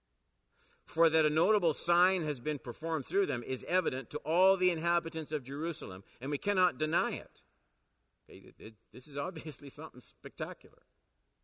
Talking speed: 165 wpm